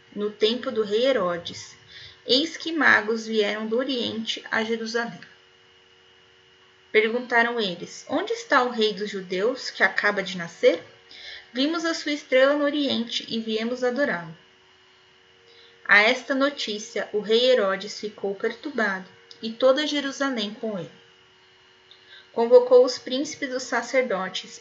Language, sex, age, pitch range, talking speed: Portuguese, female, 20-39, 170-250 Hz, 125 wpm